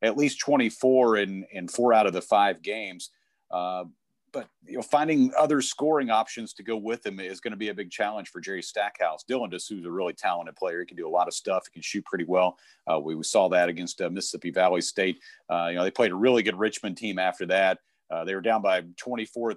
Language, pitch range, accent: English, 95-120 Hz, American